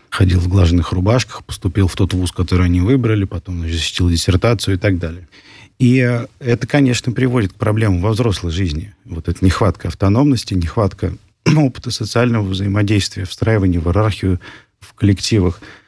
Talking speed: 145 wpm